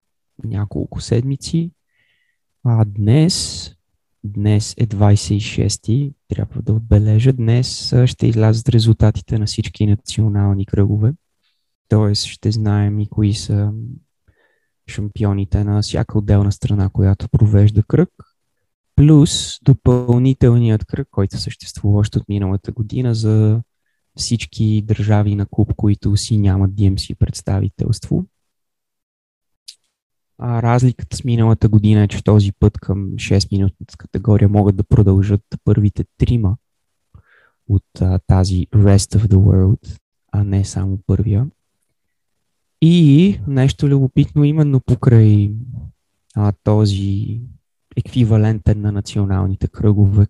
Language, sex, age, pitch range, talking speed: Bulgarian, male, 20-39, 100-120 Hz, 105 wpm